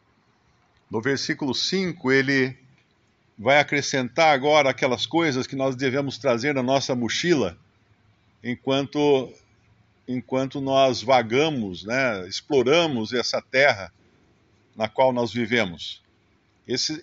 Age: 50-69